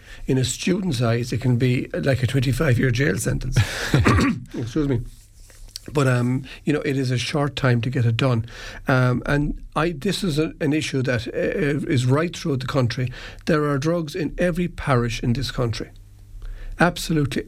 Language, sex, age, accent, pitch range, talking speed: English, male, 50-69, Irish, 125-145 Hz, 175 wpm